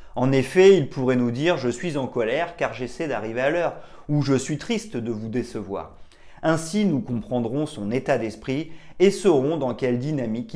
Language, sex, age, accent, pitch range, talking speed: French, male, 30-49, French, 110-150 Hz, 190 wpm